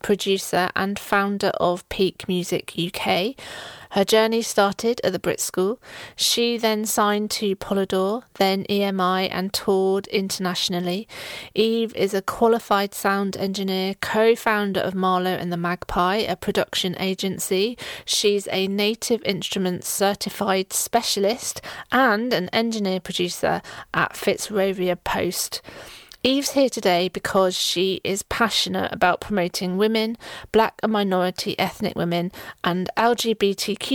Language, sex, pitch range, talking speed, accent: English, female, 185-220 Hz, 120 wpm, British